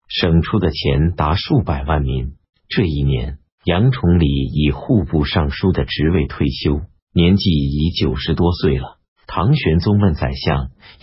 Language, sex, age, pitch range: Chinese, male, 50-69, 75-100 Hz